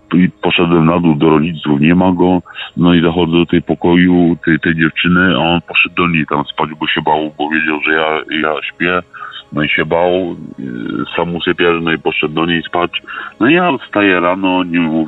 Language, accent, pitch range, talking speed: Polish, native, 85-110 Hz, 210 wpm